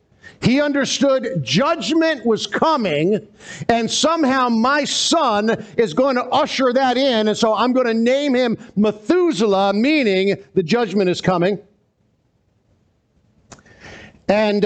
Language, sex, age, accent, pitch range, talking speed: English, male, 50-69, American, 175-235 Hz, 120 wpm